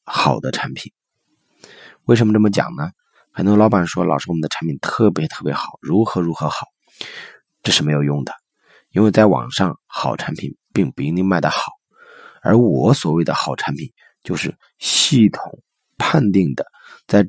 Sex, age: male, 30-49